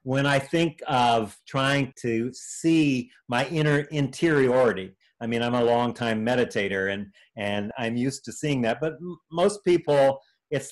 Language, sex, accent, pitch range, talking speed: English, male, American, 115-150 Hz, 150 wpm